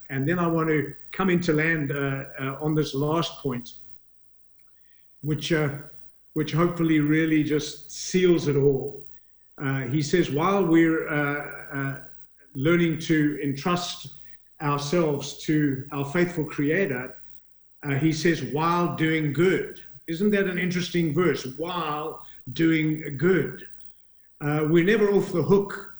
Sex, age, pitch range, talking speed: male, 50-69, 140-170 Hz, 135 wpm